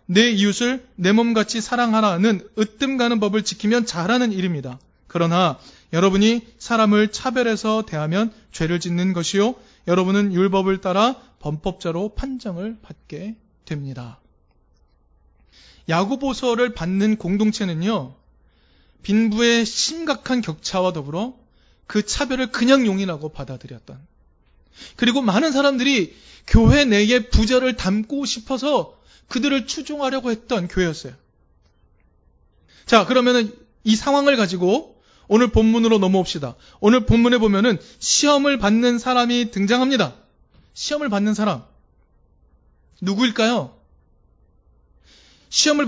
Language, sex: Korean, male